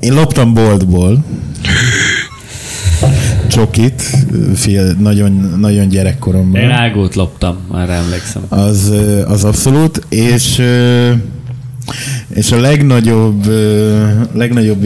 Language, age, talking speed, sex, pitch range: Hungarian, 20-39, 75 wpm, male, 95-115 Hz